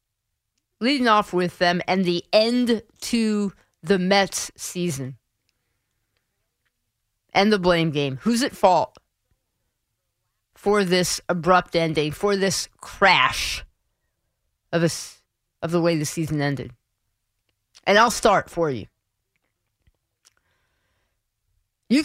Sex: female